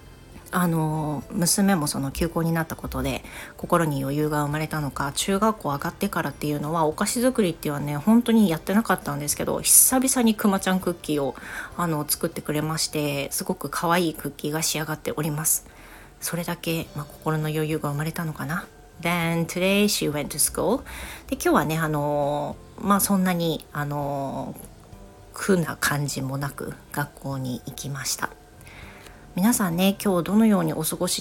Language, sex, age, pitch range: Japanese, female, 40-59, 150-190 Hz